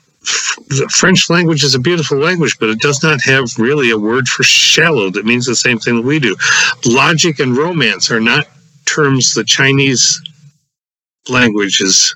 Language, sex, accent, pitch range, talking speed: English, male, American, 120-155 Hz, 170 wpm